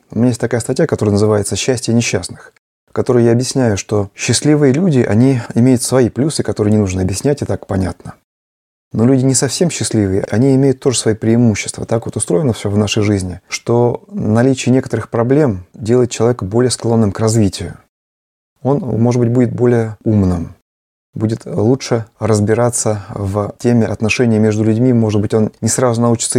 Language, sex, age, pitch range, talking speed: Russian, male, 20-39, 105-125 Hz, 170 wpm